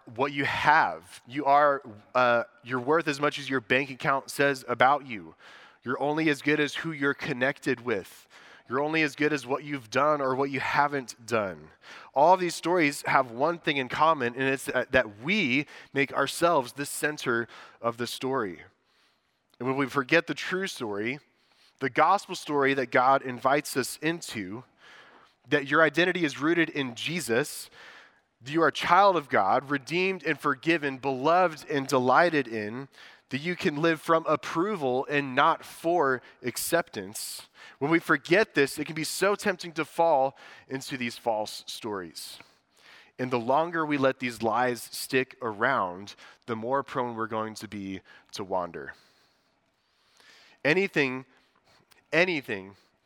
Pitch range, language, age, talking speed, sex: 125-155 Hz, English, 20-39, 155 wpm, male